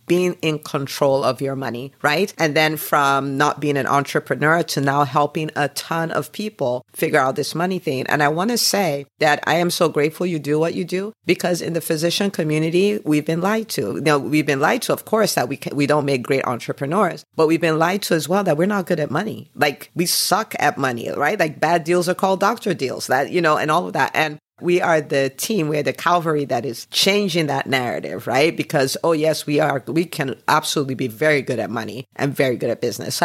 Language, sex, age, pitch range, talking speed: English, female, 50-69, 145-180 Hz, 235 wpm